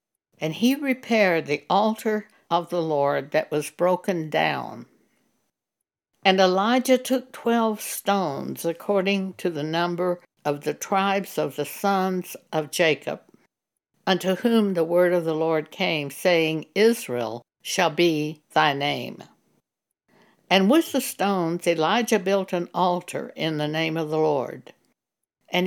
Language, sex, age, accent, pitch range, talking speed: English, female, 60-79, American, 160-205 Hz, 135 wpm